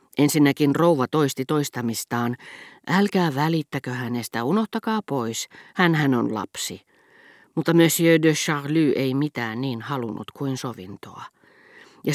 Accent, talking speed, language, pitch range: native, 115 wpm, Finnish, 120-160 Hz